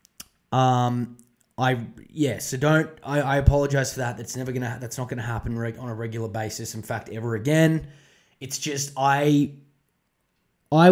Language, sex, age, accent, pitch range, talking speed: English, male, 20-39, Australian, 120-155 Hz, 180 wpm